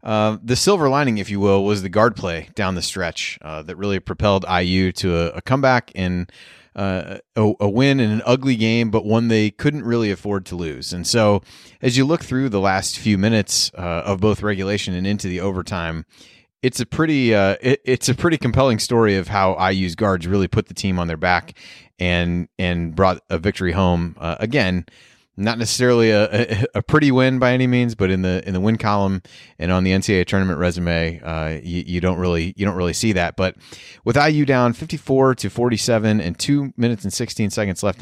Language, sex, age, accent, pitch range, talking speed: English, male, 30-49, American, 90-120 Hz, 210 wpm